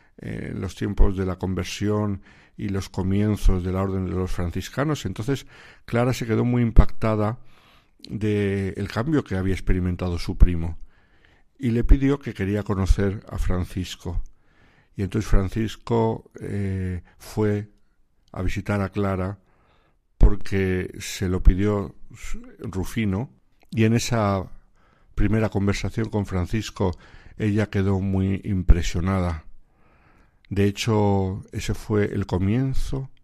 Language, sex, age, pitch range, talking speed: Spanish, male, 60-79, 90-105 Hz, 125 wpm